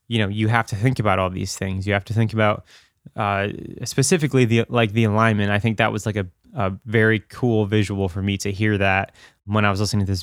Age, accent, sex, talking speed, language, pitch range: 20-39, American, male, 245 wpm, English, 100-120 Hz